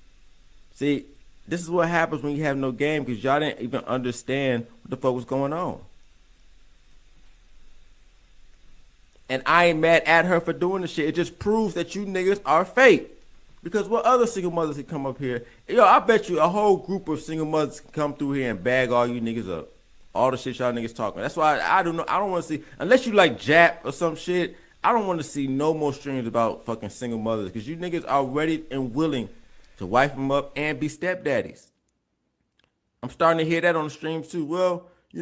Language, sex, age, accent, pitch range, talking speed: English, male, 30-49, American, 125-170 Hz, 220 wpm